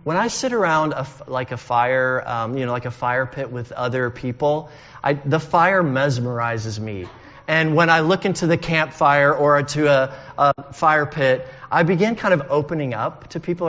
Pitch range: 125-160 Hz